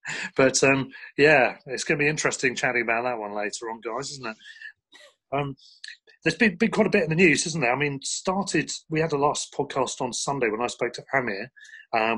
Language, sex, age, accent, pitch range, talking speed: English, male, 40-59, British, 115-145 Hz, 220 wpm